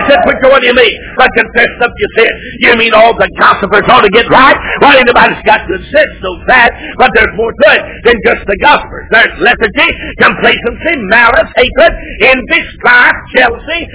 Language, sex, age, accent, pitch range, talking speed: English, male, 50-69, American, 225-280 Hz, 195 wpm